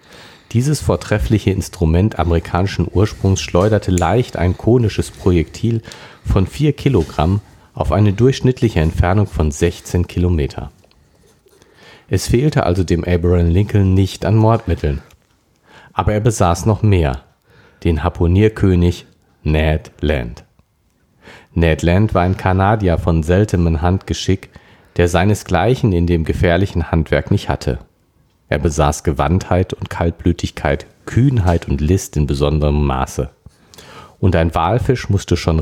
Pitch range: 85-105 Hz